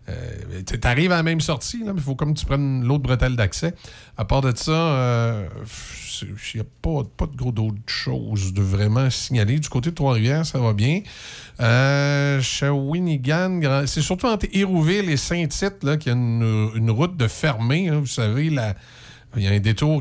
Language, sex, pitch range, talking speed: French, male, 115-150 Hz, 200 wpm